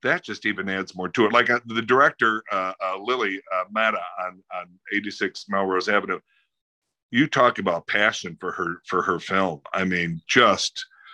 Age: 50-69